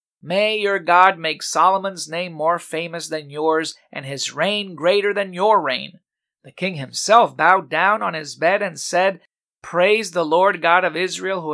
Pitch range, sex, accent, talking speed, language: 150-200 Hz, male, American, 175 wpm, English